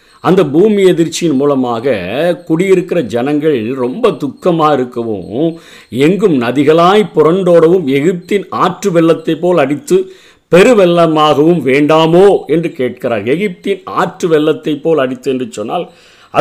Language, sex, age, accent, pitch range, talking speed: Tamil, male, 50-69, native, 135-185 Hz, 100 wpm